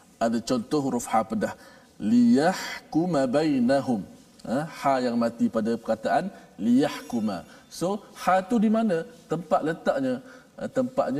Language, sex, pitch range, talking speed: Malayalam, male, 160-250 Hz, 115 wpm